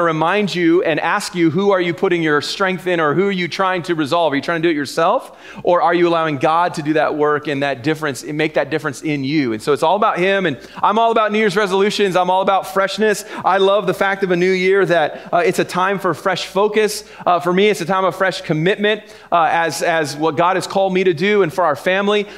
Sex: male